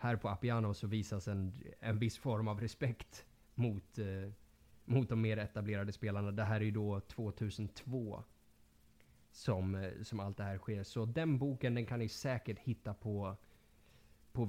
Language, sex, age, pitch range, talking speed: Swedish, male, 20-39, 105-125 Hz, 170 wpm